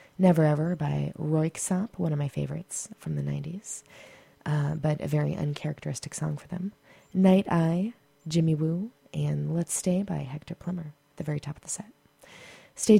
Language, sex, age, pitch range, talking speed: English, female, 20-39, 150-185 Hz, 170 wpm